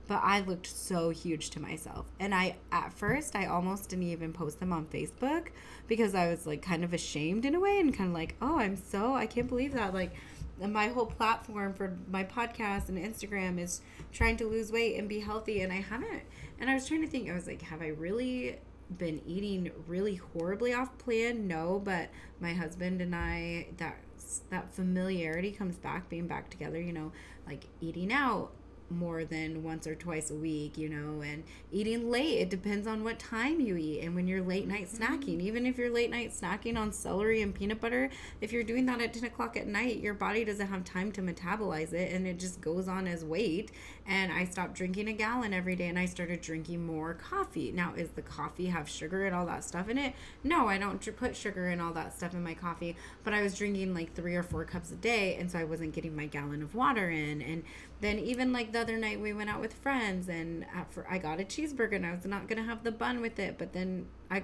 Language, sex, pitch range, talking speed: English, female, 170-225 Hz, 230 wpm